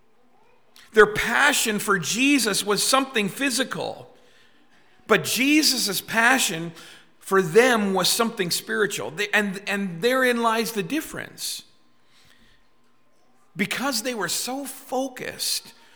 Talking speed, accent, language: 100 wpm, American, English